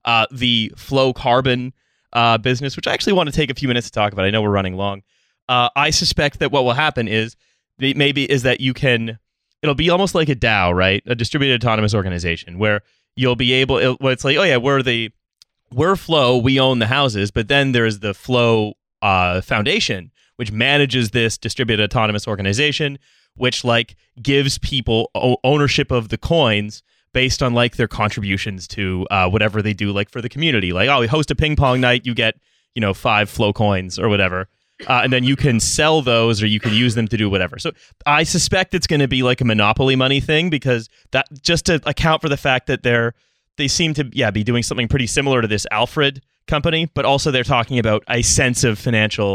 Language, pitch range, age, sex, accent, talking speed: English, 110-140 Hz, 30-49, male, American, 215 wpm